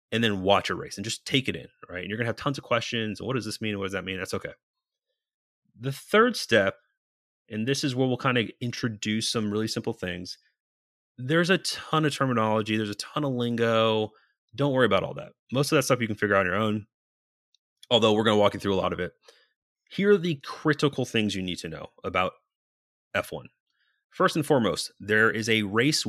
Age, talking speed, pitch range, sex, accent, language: 30-49, 230 wpm, 100-130 Hz, male, American, English